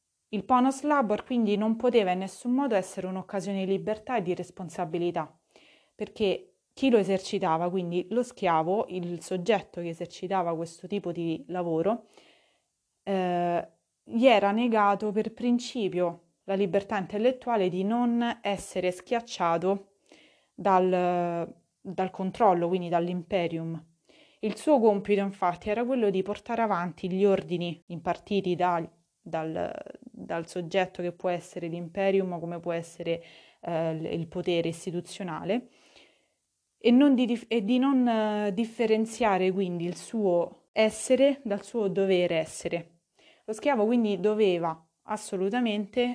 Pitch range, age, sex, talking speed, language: 175-220 Hz, 20-39, female, 125 wpm, Italian